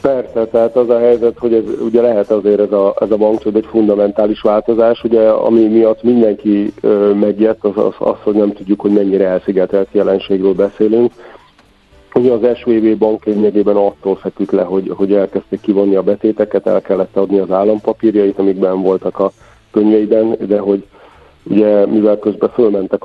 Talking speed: 160 wpm